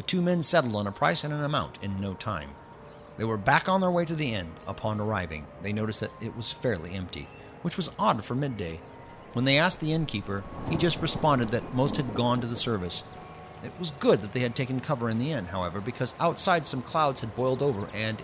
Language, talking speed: English, 235 wpm